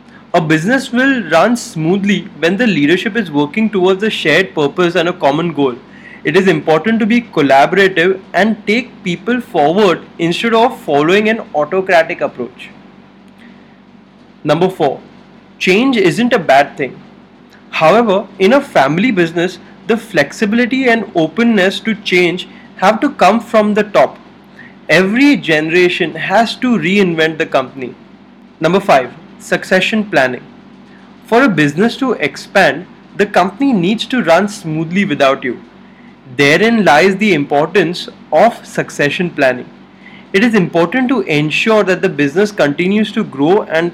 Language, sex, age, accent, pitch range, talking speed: English, male, 20-39, Indian, 165-225 Hz, 140 wpm